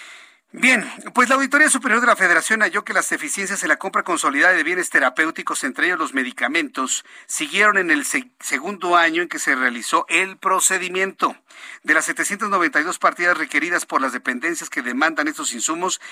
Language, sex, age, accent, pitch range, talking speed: Spanish, male, 50-69, Mexican, 175-245 Hz, 170 wpm